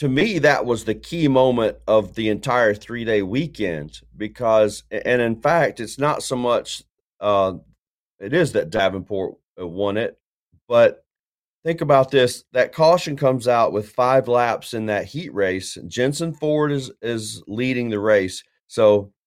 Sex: male